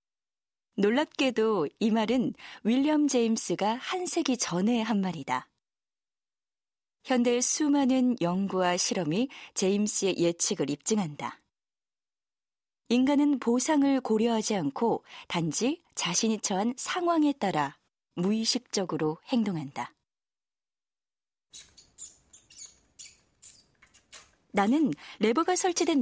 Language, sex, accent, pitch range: Korean, female, native, 190-265 Hz